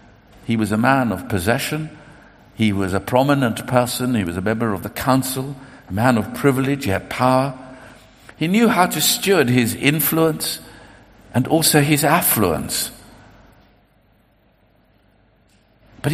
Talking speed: 140 wpm